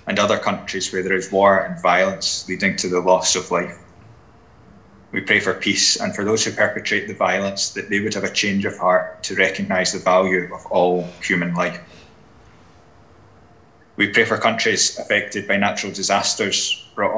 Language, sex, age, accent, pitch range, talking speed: English, male, 20-39, British, 90-100 Hz, 180 wpm